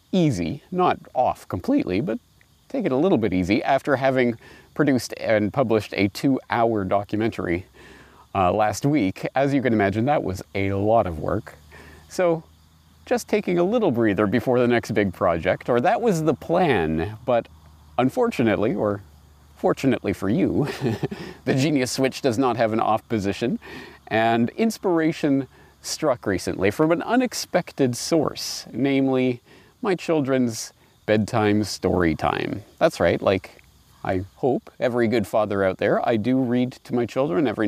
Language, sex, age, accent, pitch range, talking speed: English, male, 40-59, American, 95-145 Hz, 150 wpm